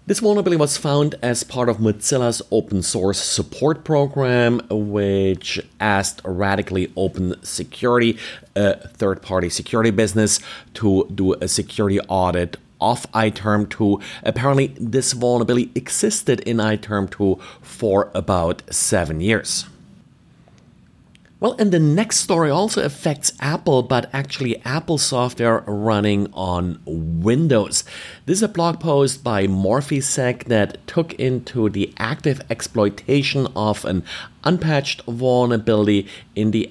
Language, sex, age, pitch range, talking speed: English, male, 30-49, 100-135 Hz, 115 wpm